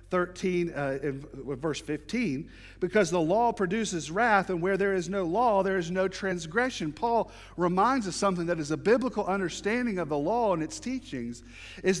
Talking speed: 175 wpm